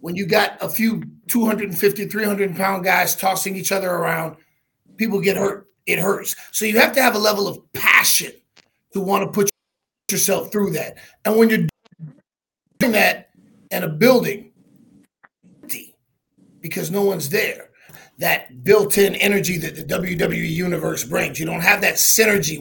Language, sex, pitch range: English, male, 180-210 Hz